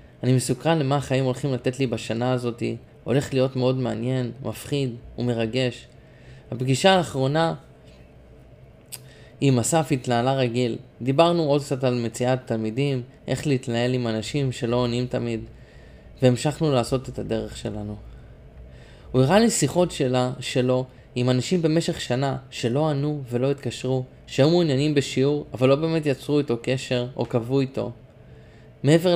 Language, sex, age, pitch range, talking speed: Hebrew, male, 20-39, 120-145 Hz, 135 wpm